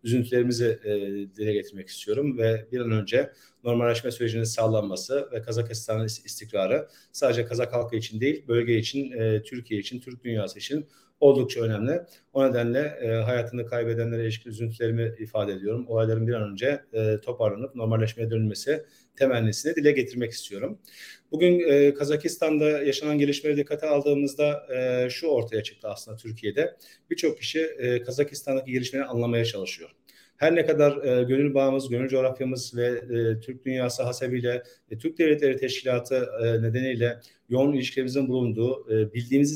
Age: 40-59